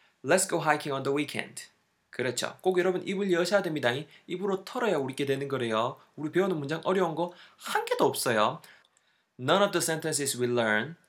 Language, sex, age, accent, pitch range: Korean, male, 20-39, native, 120-180 Hz